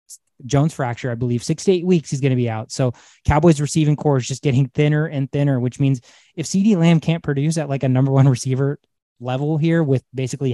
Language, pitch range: English, 125-150 Hz